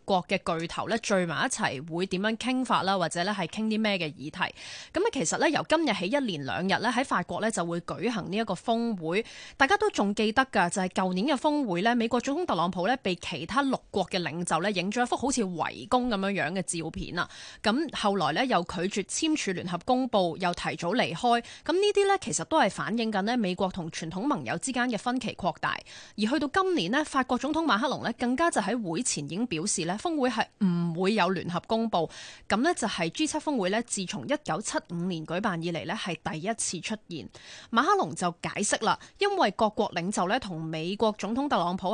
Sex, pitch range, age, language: female, 175-255 Hz, 20-39, Chinese